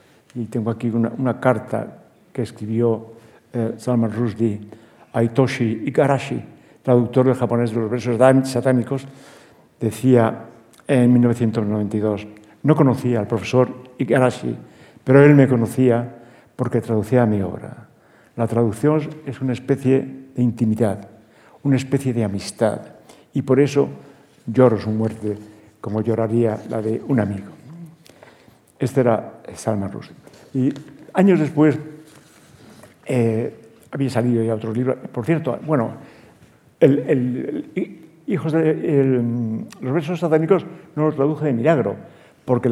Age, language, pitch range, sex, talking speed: 60-79, Spanish, 115-140 Hz, male, 130 wpm